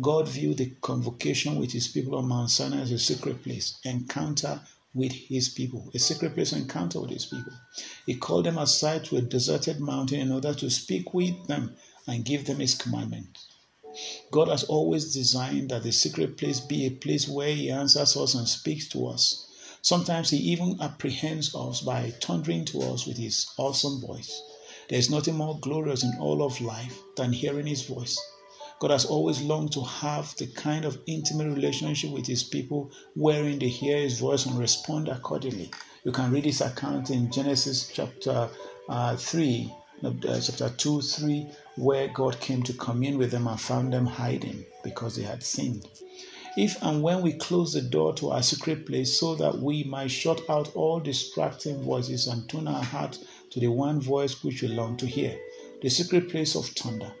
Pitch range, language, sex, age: 125-150 Hz, English, male, 50-69